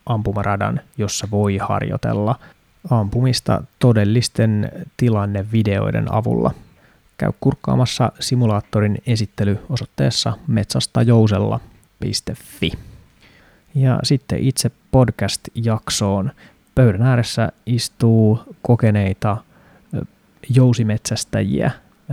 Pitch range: 110-135 Hz